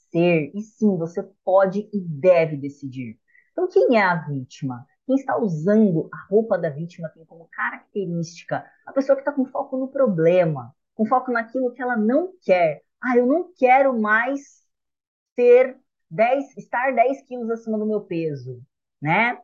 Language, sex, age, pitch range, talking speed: Portuguese, female, 20-39, 180-260 Hz, 165 wpm